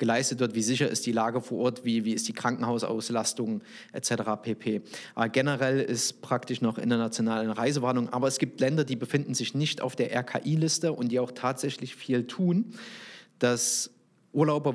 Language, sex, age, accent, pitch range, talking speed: German, male, 30-49, German, 125-155 Hz, 175 wpm